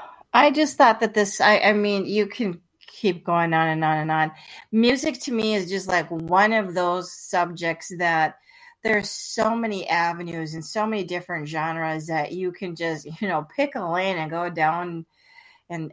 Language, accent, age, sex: English, American, 40-59, female